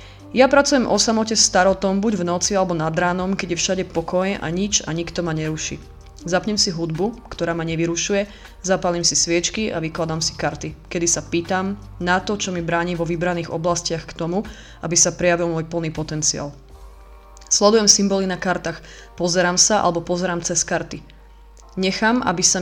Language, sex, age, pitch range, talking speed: Slovak, female, 20-39, 165-195 Hz, 175 wpm